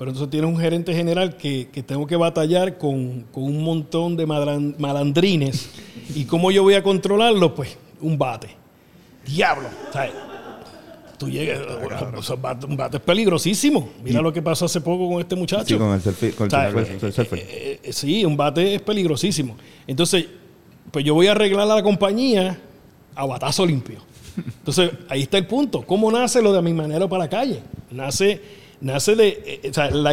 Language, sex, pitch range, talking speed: Spanish, male, 140-185 Hz, 175 wpm